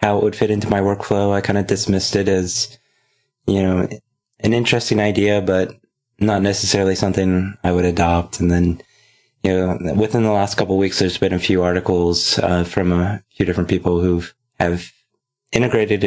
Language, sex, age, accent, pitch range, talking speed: English, male, 20-39, American, 85-100 Hz, 185 wpm